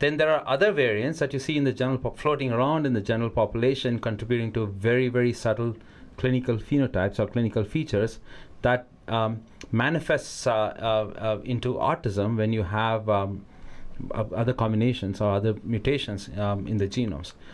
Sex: male